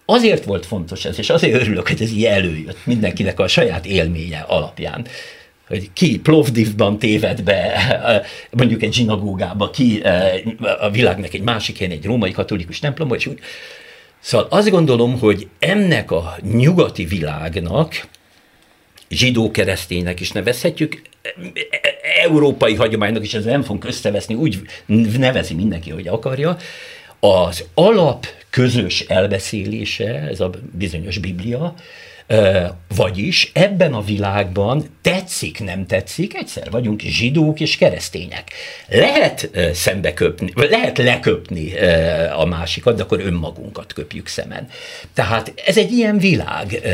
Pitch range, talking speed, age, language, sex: 100-155 Hz, 120 wpm, 60-79, Hungarian, male